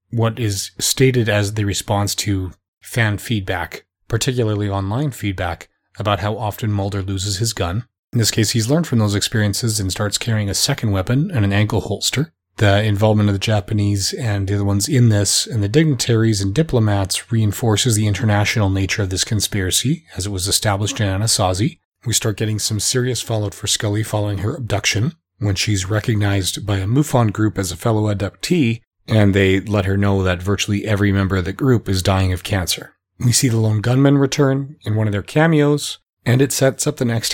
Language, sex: English, male